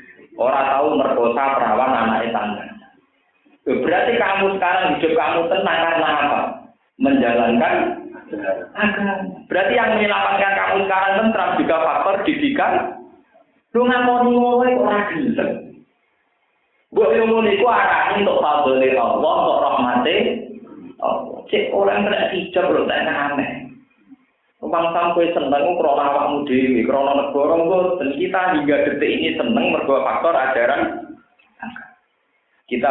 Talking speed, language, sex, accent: 100 wpm, Indonesian, male, native